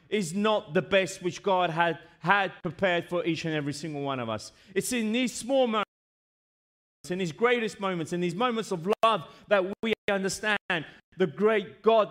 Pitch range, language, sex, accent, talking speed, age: 150-205 Hz, Italian, male, British, 185 wpm, 30-49